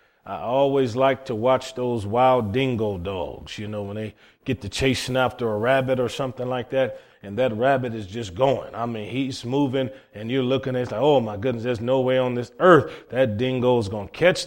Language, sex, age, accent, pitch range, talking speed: English, male, 30-49, American, 120-150 Hz, 225 wpm